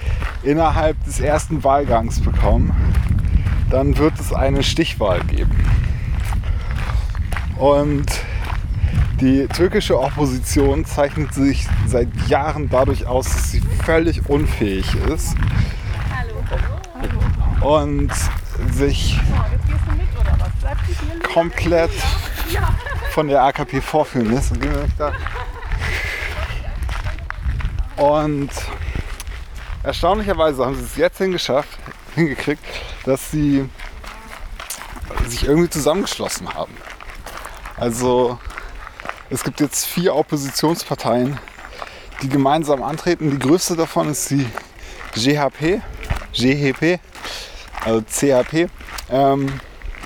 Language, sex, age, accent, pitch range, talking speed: German, male, 30-49, German, 90-140 Hz, 80 wpm